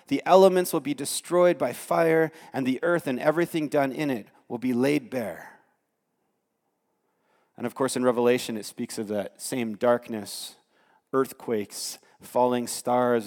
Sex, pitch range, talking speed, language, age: male, 110-150 Hz, 150 wpm, English, 30-49